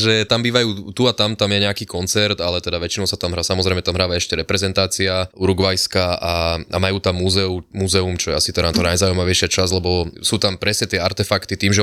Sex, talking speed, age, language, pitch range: male, 215 wpm, 20-39, Slovak, 90-105 Hz